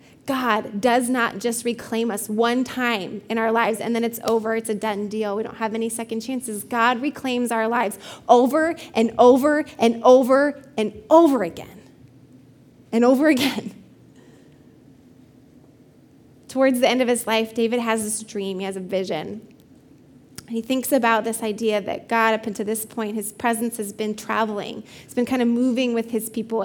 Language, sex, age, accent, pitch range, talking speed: English, female, 20-39, American, 220-255 Hz, 180 wpm